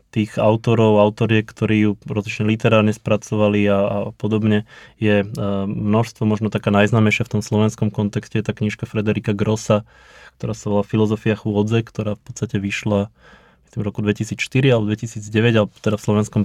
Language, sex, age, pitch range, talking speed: Slovak, male, 20-39, 105-110 Hz, 155 wpm